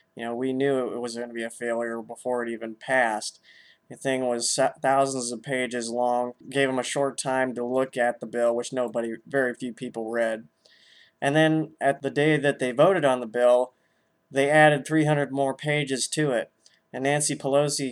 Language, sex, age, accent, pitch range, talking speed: English, male, 20-39, American, 120-140 Hz, 200 wpm